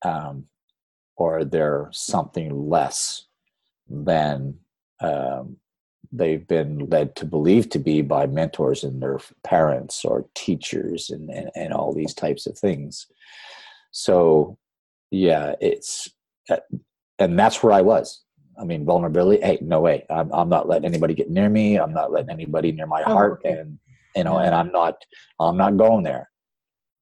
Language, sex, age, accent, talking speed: English, male, 40-59, American, 150 wpm